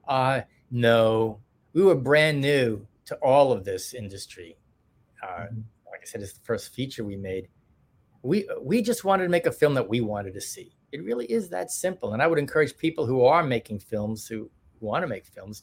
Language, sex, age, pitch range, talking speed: English, male, 40-59, 115-165 Hz, 205 wpm